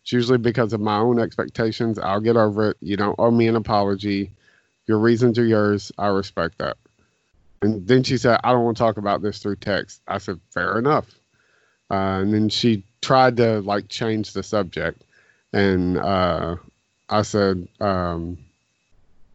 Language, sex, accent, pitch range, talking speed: English, male, American, 100-115 Hz, 175 wpm